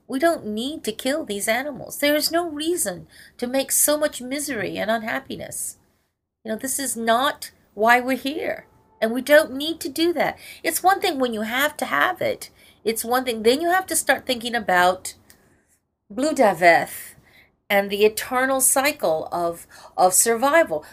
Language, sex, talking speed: English, female, 175 wpm